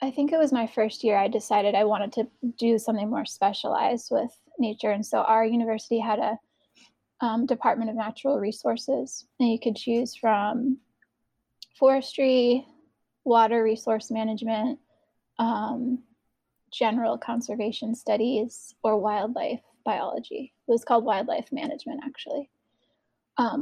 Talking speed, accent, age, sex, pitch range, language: 130 wpm, American, 10-29, female, 220-260 Hz, English